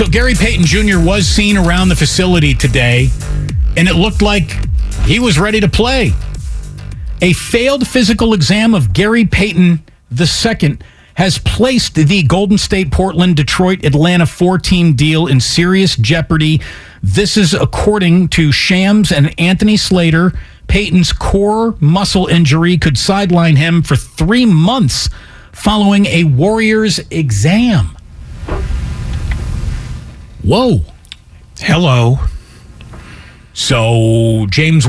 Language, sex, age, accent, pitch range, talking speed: English, male, 50-69, American, 135-200 Hz, 115 wpm